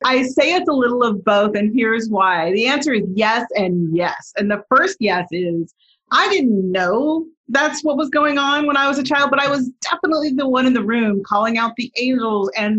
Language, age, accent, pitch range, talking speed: English, 40-59, American, 195-255 Hz, 225 wpm